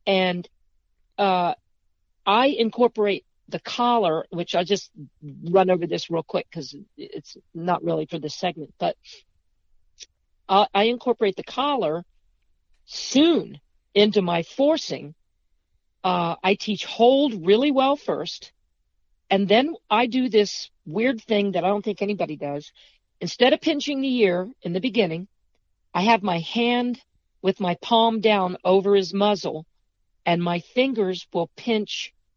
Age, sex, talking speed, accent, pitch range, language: 50-69, female, 140 wpm, American, 170-220 Hz, English